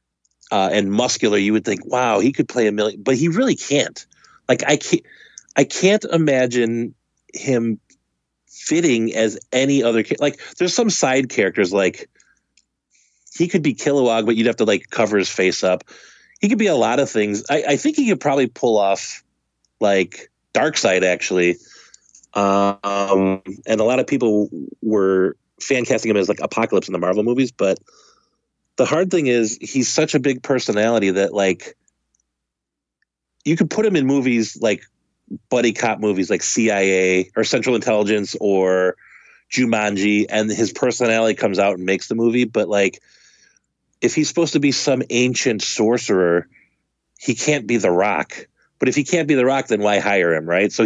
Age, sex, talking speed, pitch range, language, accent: 30-49, male, 175 wpm, 100-140 Hz, English, American